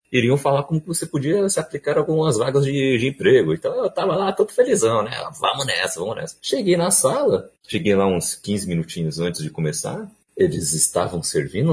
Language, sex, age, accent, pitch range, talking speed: Portuguese, male, 30-49, Brazilian, 110-160 Hz, 190 wpm